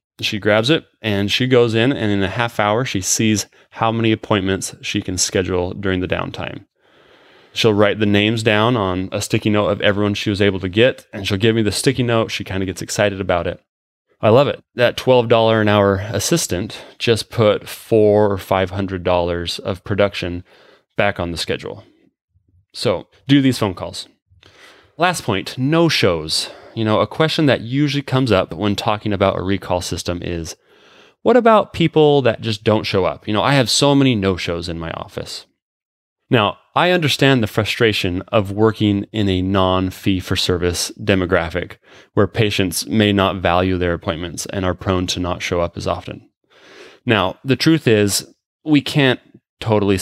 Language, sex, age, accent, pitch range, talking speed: English, male, 30-49, American, 95-115 Hz, 180 wpm